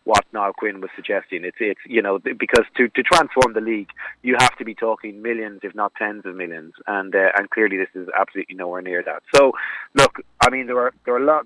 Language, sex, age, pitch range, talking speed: English, male, 30-49, 100-115 Hz, 240 wpm